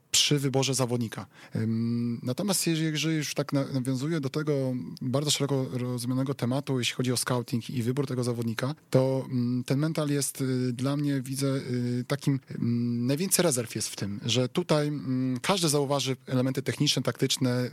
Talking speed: 140 wpm